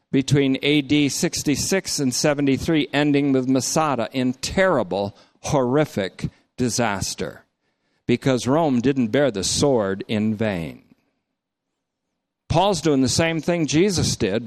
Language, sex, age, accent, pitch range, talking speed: English, male, 50-69, American, 135-175 Hz, 110 wpm